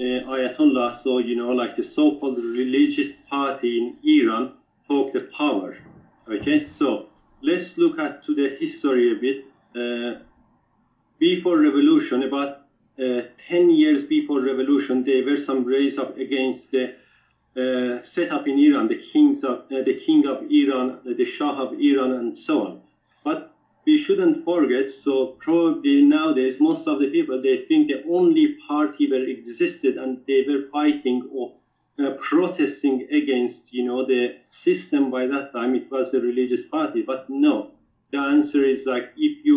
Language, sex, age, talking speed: English, male, 40-59, 160 wpm